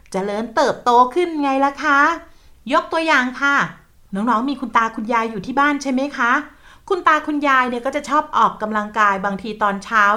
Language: Thai